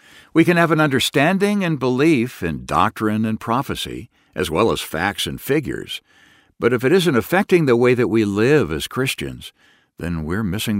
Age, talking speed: 60-79, 180 wpm